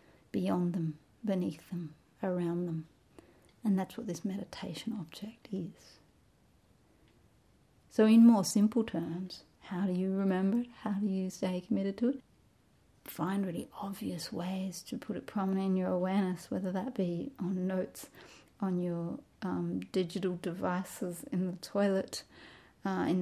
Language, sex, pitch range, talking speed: English, female, 180-205 Hz, 145 wpm